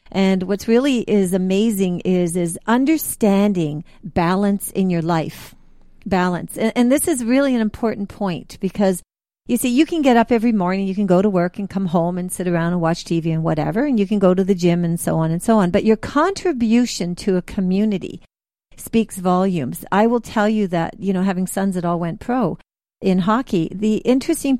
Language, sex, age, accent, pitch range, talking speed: English, female, 50-69, American, 185-235 Hz, 205 wpm